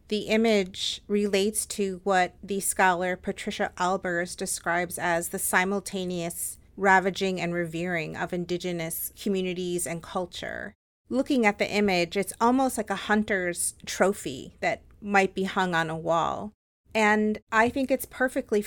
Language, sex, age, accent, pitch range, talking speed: English, female, 30-49, American, 180-215 Hz, 140 wpm